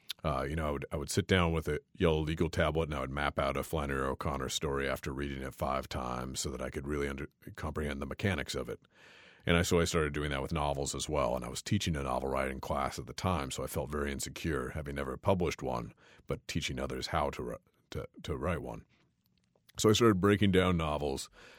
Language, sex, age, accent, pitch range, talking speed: English, male, 40-59, American, 70-85 Hz, 235 wpm